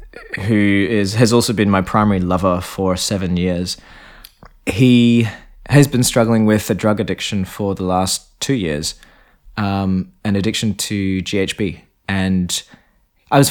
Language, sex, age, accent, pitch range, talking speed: English, male, 20-39, Australian, 95-110 Hz, 140 wpm